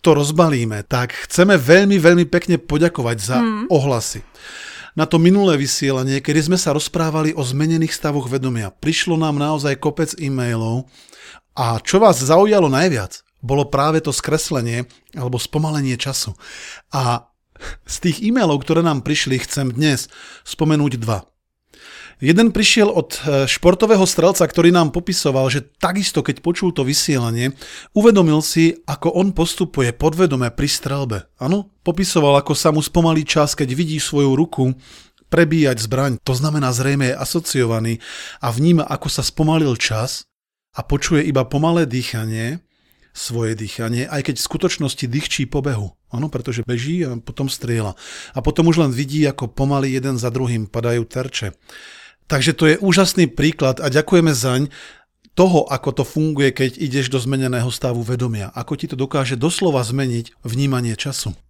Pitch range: 125-165 Hz